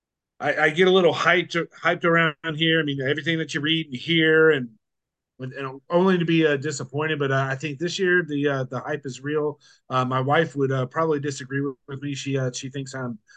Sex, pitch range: male, 135-165 Hz